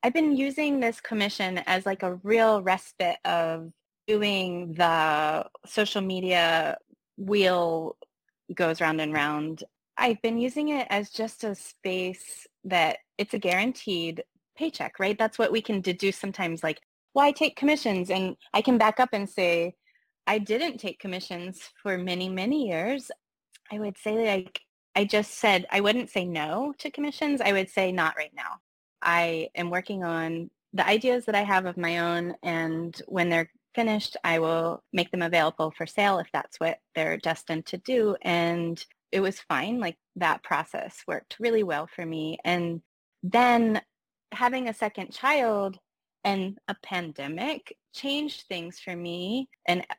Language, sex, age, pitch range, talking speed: English, female, 20-39, 170-225 Hz, 160 wpm